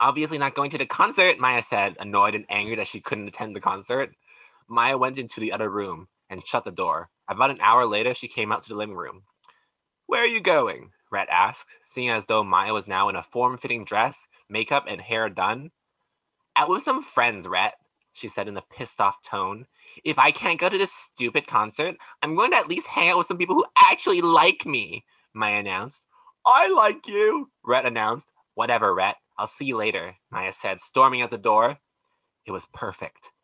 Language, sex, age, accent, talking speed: English, male, 20-39, American, 205 wpm